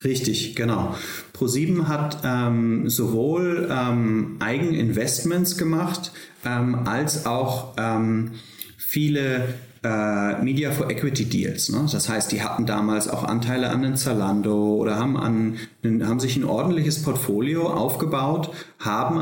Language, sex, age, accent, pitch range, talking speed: German, male, 30-49, German, 110-135 Hz, 130 wpm